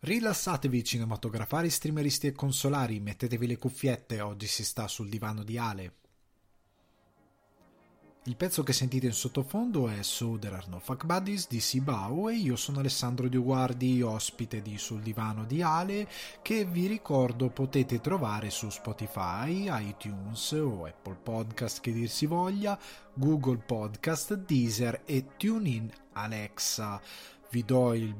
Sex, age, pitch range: male, 20-39, 115-145 Hz